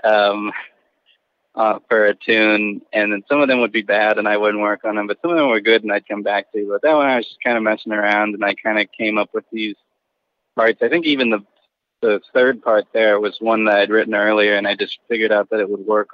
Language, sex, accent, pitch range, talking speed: English, male, American, 100-110 Hz, 270 wpm